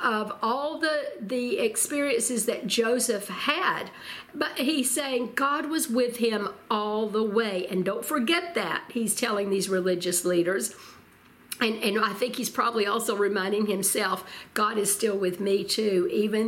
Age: 50-69